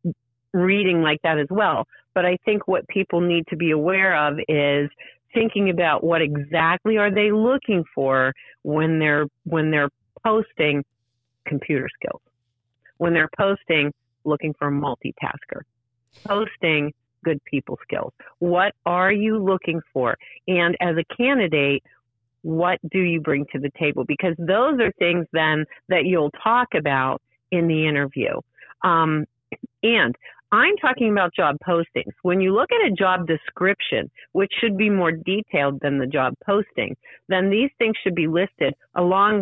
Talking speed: 150 wpm